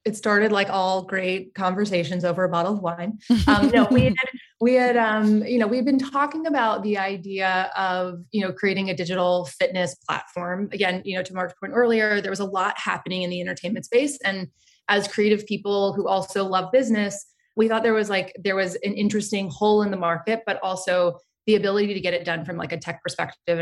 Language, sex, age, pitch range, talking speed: English, female, 20-39, 180-210 Hz, 215 wpm